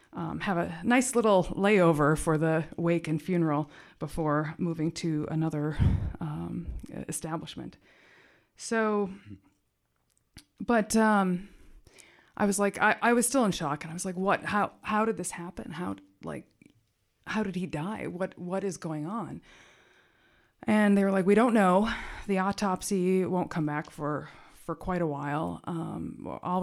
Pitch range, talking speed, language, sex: 155-185 Hz, 155 wpm, English, female